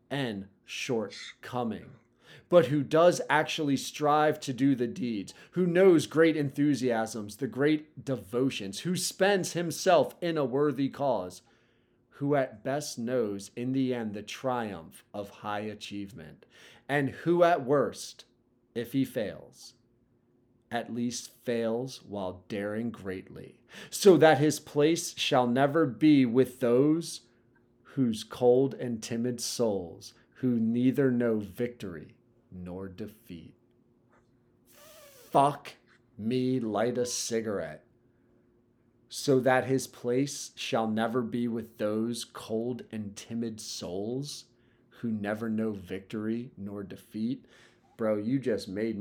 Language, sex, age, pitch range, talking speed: English, male, 40-59, 115-140 Hz, 120 wpm